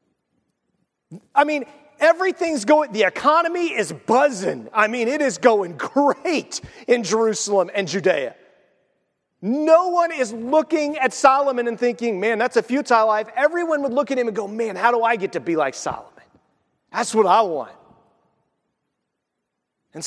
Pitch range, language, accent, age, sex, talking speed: 185-260 Hz, English, American, 40-59, male, 155 wpm